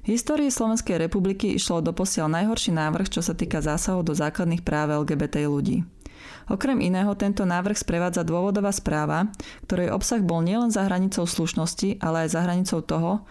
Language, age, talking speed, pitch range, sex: Slovak, 20-39, 160 wpm, 165-205 Hz, female